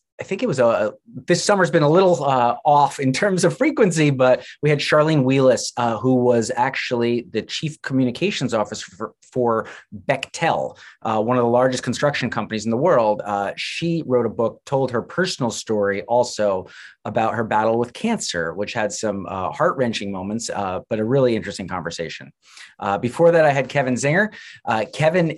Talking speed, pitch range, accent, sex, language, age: 185 wpm, 105-135 Hz, American, male, English, 30-49